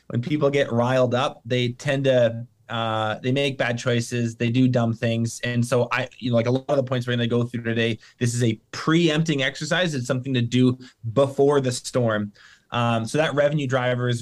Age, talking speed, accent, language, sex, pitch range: 20-39, 215 wpm, American, English, male, 120-150 Hz